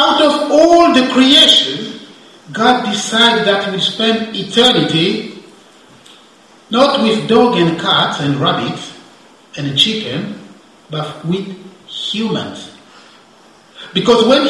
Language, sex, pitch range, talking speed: English, male, 190-250 Hz, 105 wpm